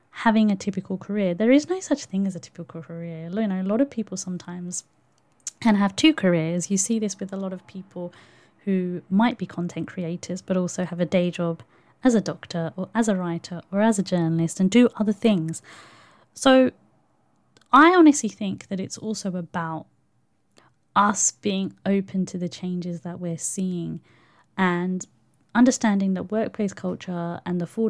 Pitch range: 175-215 Hz